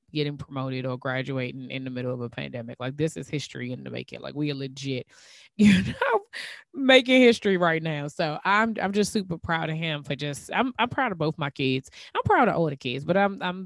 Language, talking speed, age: English, 235 wpm, 20-39